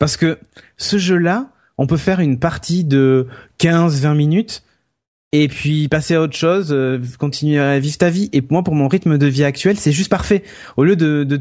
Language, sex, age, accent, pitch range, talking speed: French, male, 20-39, French, 125-155 Hz, 200 wpm